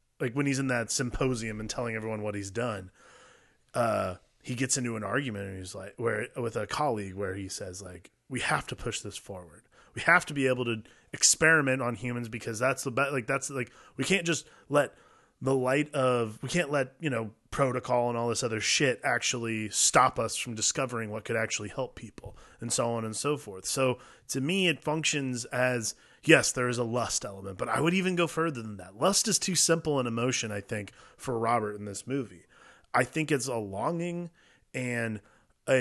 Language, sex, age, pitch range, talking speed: English, male, 20-39, 115-140 Hz, 210 wpm